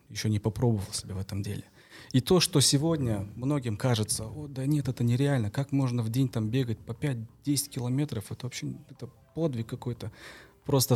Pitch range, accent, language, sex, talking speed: 110-130 Hz, native, Russian, male, 175 wpm